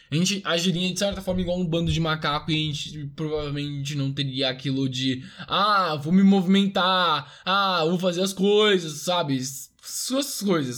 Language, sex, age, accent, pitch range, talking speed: Portuguese, male, 10-29, Brazilian, 140-210 Hz, 175 wpm